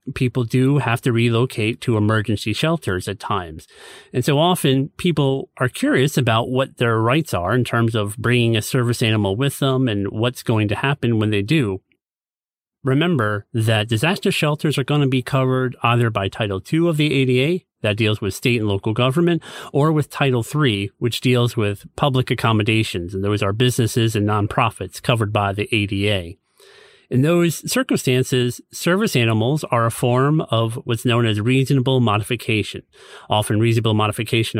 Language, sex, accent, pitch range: English, male, American, 110-135 Hz